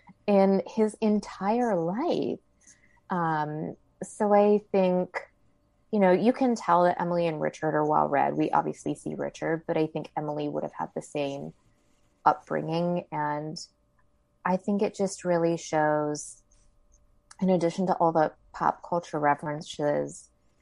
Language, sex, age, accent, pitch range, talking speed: English, female, 20-39, American, 155-195 Hz, 145 wpm